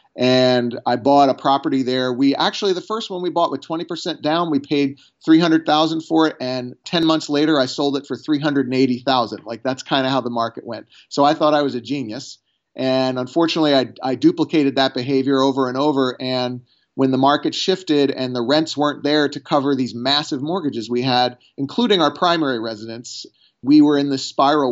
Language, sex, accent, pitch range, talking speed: English, male, American, 125-145 Hz, 195 wpm